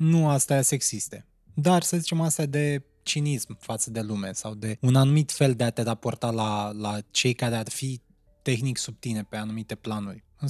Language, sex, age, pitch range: Romanian, male, 20-39, 125-175 Hz